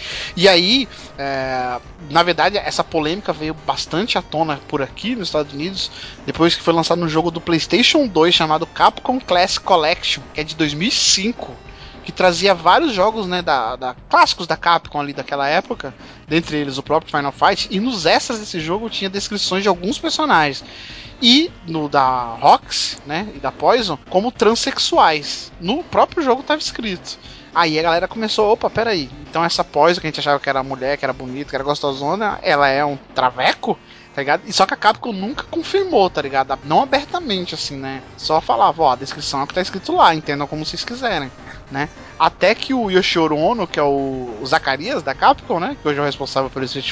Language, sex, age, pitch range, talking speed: Portuguese, male, 20-39, 145-200 Hz, 195 wpm